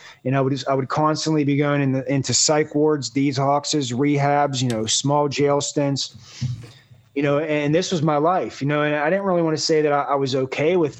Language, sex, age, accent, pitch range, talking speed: English, male, 20-39, American, 135-150 Hz, 235 wpm